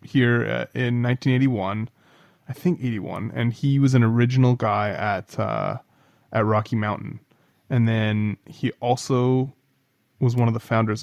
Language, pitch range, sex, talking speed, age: English, 115-140 Hz, male, 140 wpm, 20-39